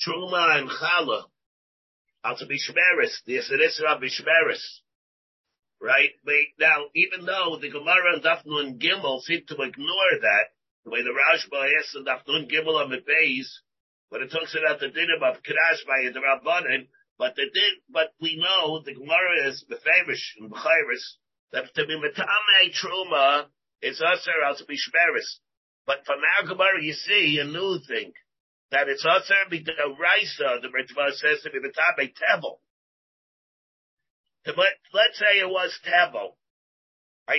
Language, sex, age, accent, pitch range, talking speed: English, male, 50-69, American, 155-220 Hz, 145 wpm